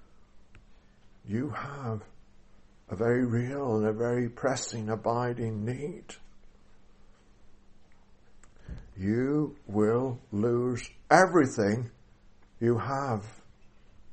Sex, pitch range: male, 100-135 Hz